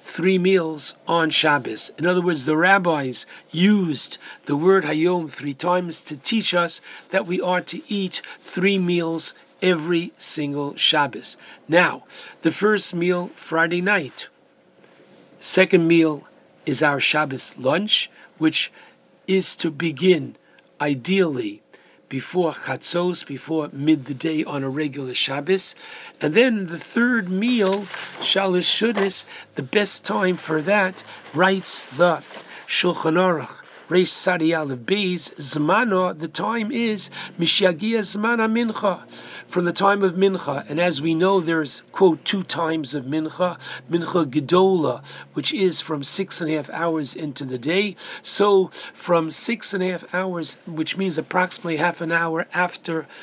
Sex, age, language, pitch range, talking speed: male, 60-79, English, 155-190 Hz, 135 wpm